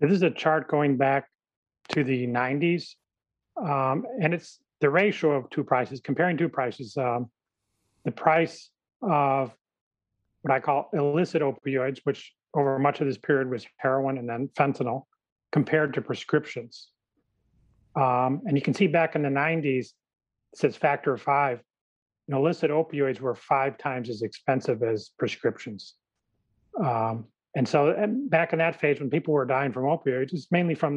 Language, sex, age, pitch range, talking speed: English, male, 40-59, 125-155 Hz, 165 wpm